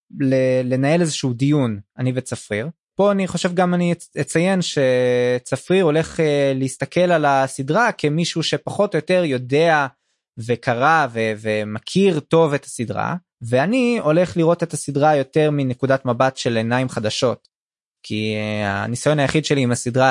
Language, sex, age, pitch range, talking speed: Hebrew, male, 20-39, 115-155 Hz, 130 wpm